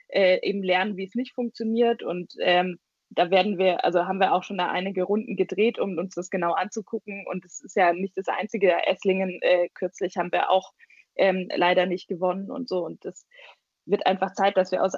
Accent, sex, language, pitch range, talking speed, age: German, female, German, 180-215 Hz, 210 wpm, 20-39